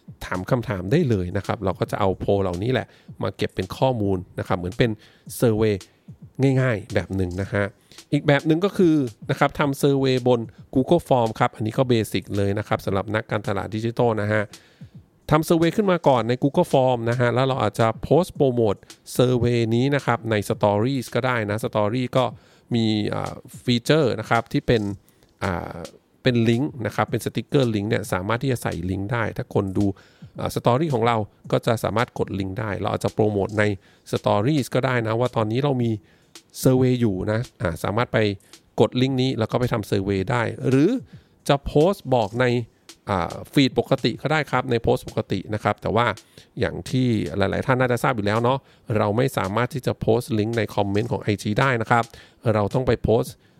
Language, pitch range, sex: English, 105-130 Hz, male